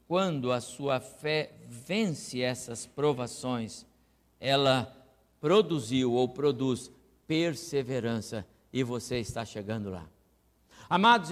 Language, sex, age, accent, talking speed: Portuguese, male, 60-79, Brazilian, 95 wpm